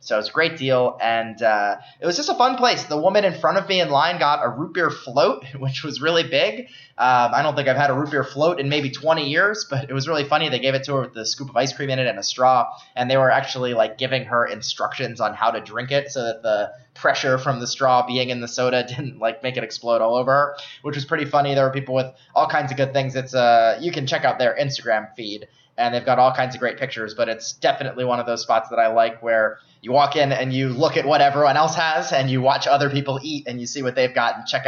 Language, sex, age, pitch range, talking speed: English, male, 20-39, 120-145 Hz, 280 wpm